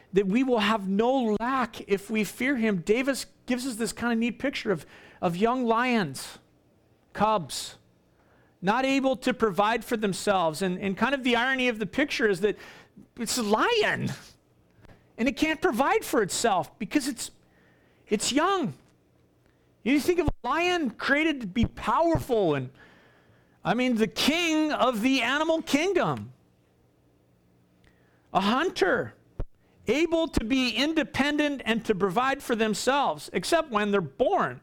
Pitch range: 200-275 Hz